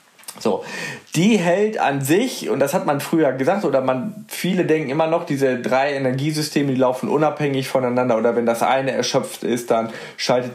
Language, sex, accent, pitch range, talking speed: German, male, German, 130-155 Hz, 180 wpm